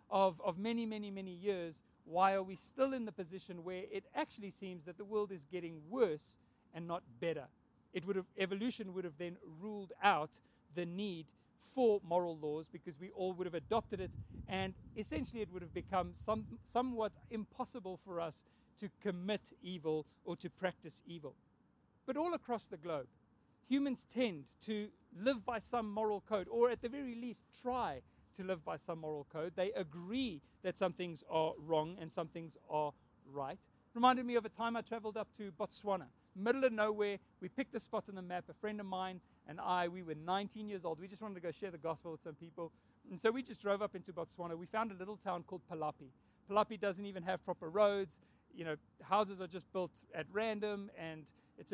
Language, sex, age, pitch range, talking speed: English, male, 40-59, 170-215 Hz, 205 wpm